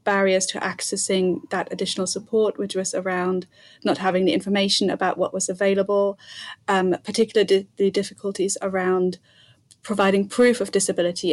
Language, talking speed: English, 140 wpm